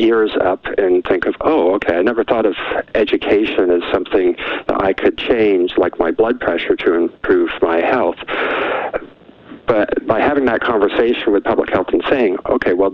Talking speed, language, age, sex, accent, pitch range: 175 wpm, English, 50-69, male, American, 320-405 Hz